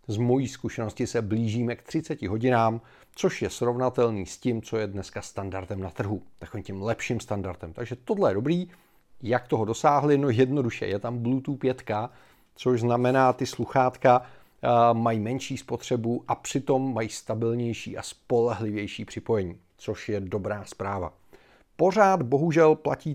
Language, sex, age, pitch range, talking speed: Czech, male, 40-59, 110-140 Hz, 150 wpm